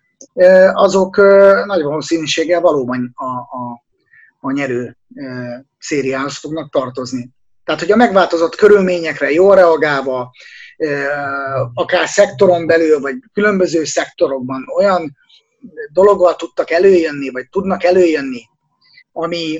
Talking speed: 100 wpm